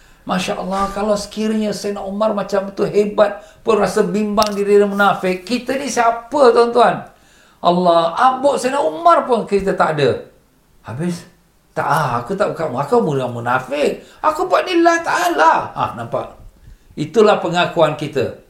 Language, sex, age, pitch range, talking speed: Malay, male, 50-69, 115-175 Hz, 145 wpm